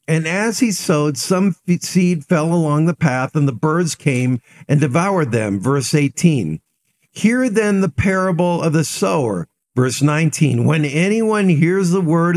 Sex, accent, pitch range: male, American, 150-185 Hz